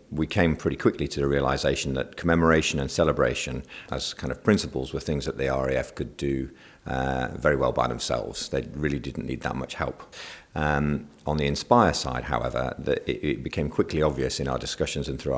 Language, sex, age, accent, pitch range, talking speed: English, male, 50-69, British, 65-75 Hz, 195 wpm